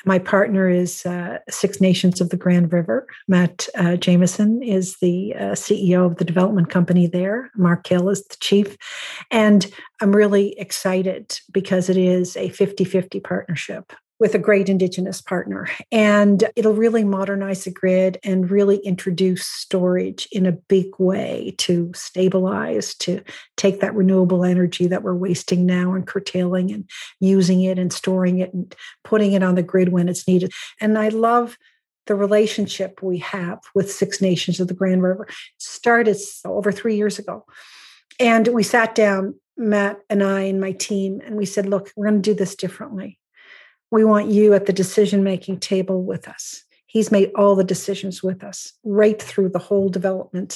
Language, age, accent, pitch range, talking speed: English, 50-69, American, 185-210 Hz, 170 wpm